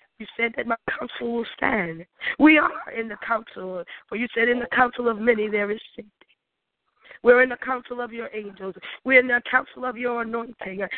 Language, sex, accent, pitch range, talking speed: English, female, American, 205-265 Hz, 200 wpm